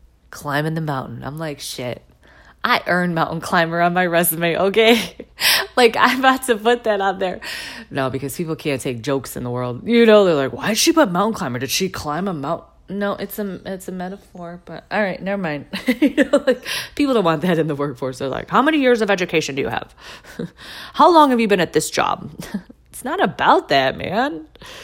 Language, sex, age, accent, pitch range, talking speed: English, female, 30-49, American, 130-220 Hz, 215 wpm